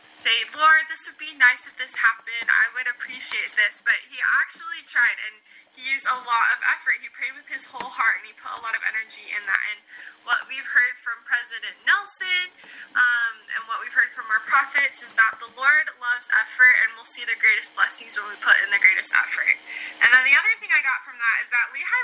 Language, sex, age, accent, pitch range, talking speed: English, female, 10-29, American, 225-315 Hz, 230 wpm